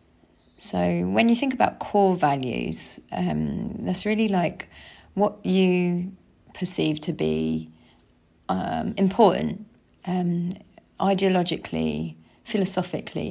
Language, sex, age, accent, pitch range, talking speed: English, female, 30-49, British, 145-195 Hz, 95 wpm